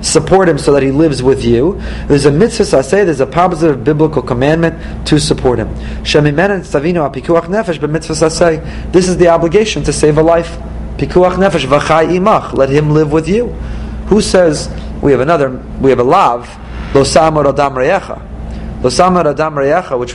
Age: 30-49